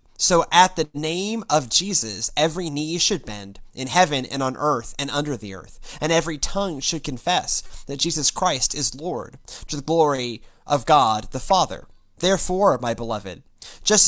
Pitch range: 120-175 Hz